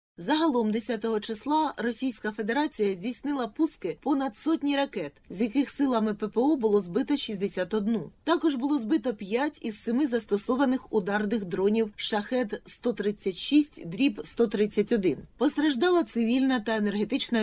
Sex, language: female, Ukrainian